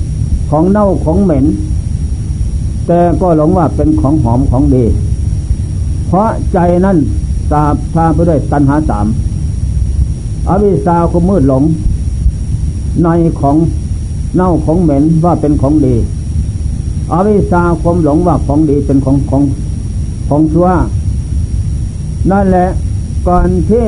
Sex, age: male, 60-79